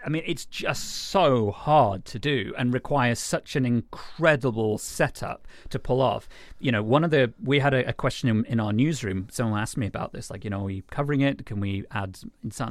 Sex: male